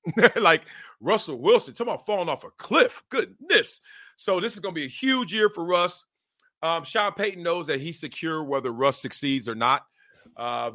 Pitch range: 130-180 Hz